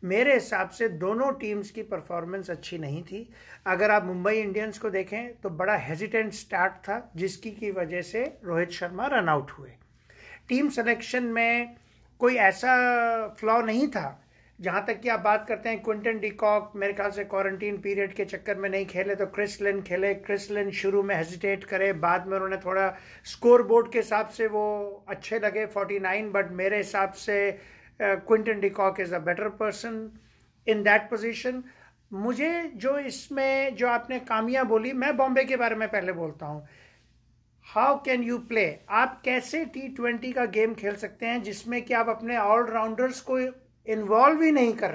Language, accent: Hindi, native